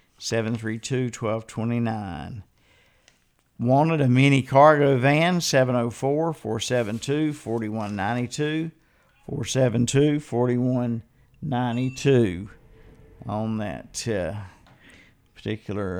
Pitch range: 110-140 Hz